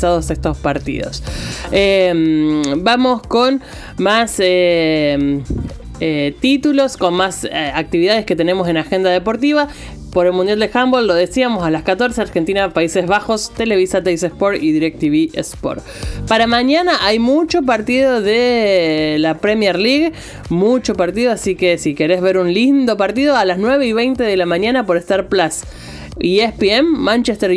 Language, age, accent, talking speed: Spanish, 30-49, Argentinian, 150 wpm